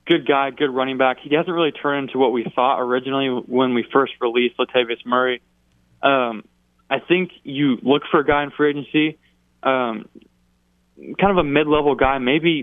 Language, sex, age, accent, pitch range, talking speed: English, male, 20-39, American, 120-135 Hz, 180 wpm